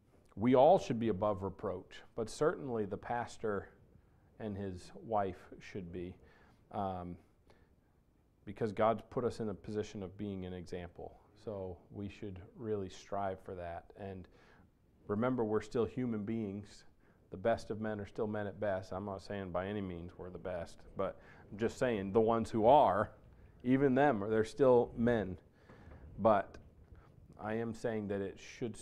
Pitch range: 95-110 Hz